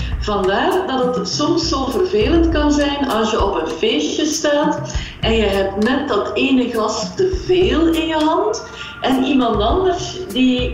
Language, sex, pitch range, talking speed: Dutch, female, 220-330 Hz, 170 wpm